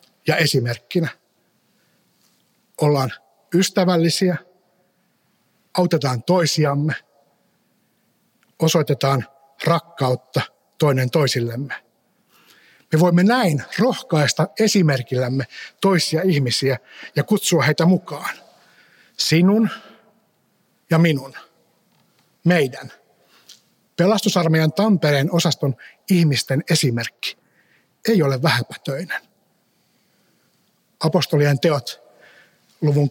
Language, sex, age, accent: Finnish, male, 60-79, native